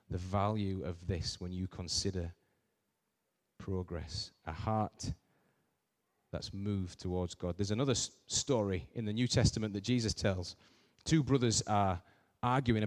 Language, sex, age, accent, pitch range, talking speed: English, male, 30-49, British, 100-125 Hz, 130 wpm